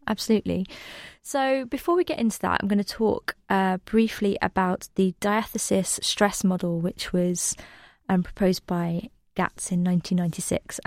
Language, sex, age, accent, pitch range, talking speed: English, female, 20-39, British, 180-205 Hz, 145 wpm